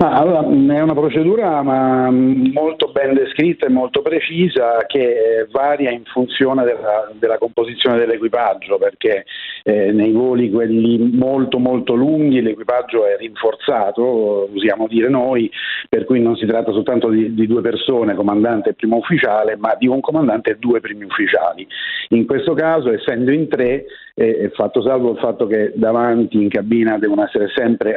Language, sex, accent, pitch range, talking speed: Italian, male, native, 110-140 Hz, 165 wpm